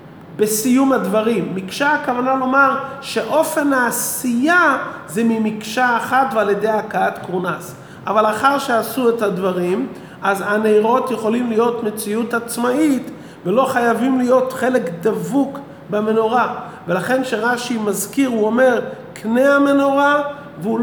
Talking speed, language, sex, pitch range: 110 wpm, English, male, 190-235 Hz